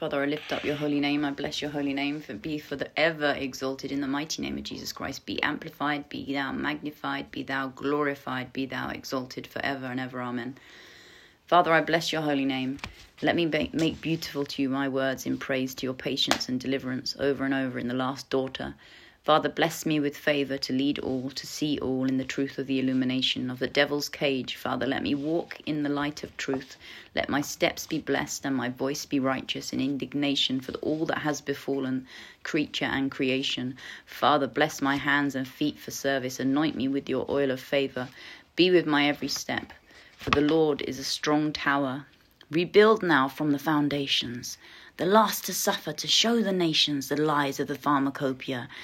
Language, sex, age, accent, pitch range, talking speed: English, female, 30-49, British, 135-155 Hz, 200 wpm